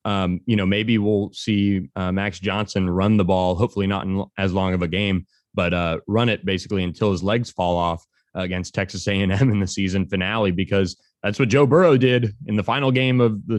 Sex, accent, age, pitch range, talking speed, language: male, American, 20-39, 90-105 Hz, 220 wpm, English